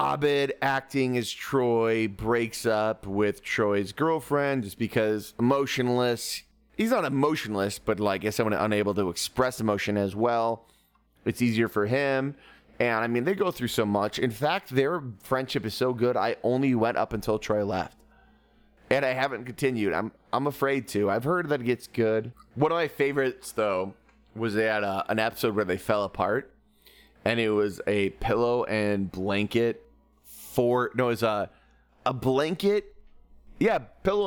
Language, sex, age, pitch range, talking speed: English, male, 30-49, 105-130 Hz, 165 wpm